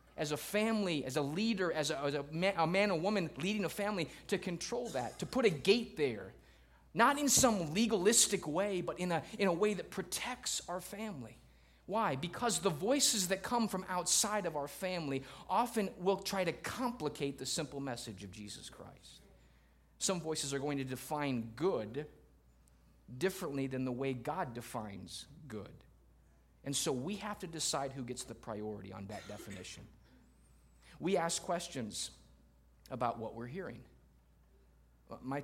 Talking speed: 160 wpm